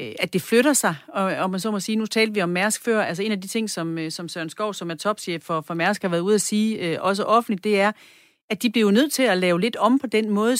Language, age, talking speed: Danish, 40-59, 295 wpm